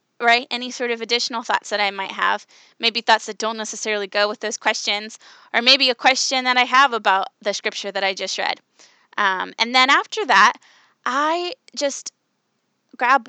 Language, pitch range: English, 215-265 Hz